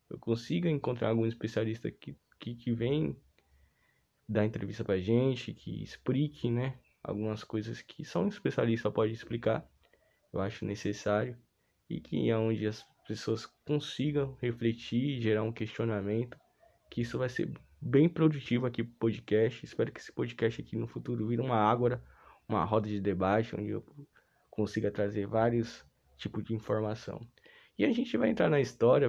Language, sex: Portuguese, male